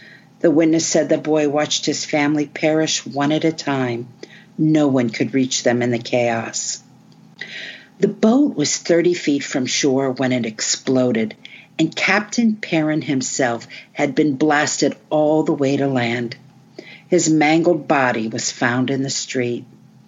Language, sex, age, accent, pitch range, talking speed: English, female, 50-69, American, 125-155 Hz, 150 wpm